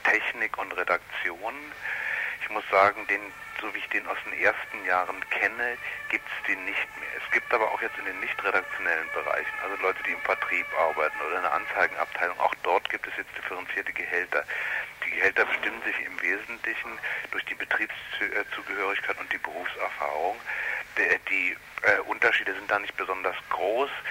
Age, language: 60-79, German